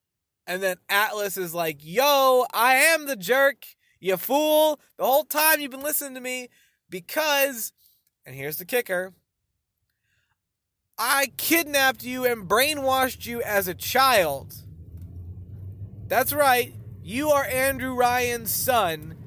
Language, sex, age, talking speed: English, male, 20-39, 130 wpm